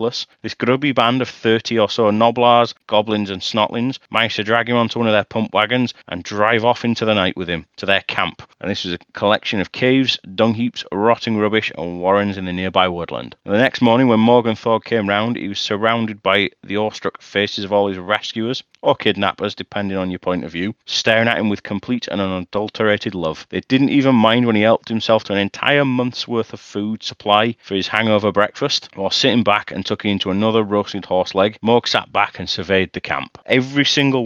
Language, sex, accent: English, male, British